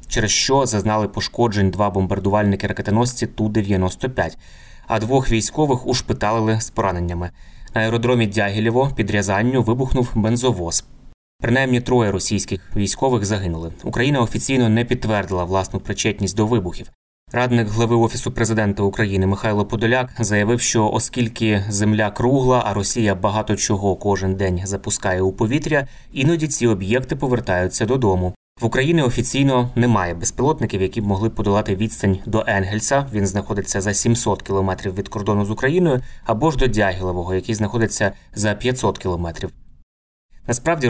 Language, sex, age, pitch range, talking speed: Ukrainian, male, 20-39, 100-120 Hz, 130 wpm